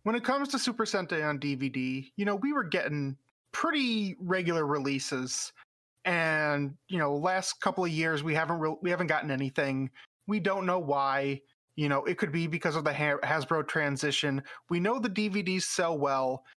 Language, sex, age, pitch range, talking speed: English, male, 30-49, 145-185 Hz, 175 wpm